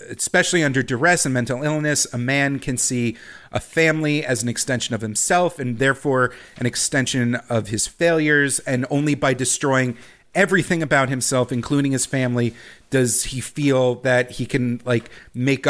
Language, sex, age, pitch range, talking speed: English, male, 40-59, 125-155 Hz, 160 wpm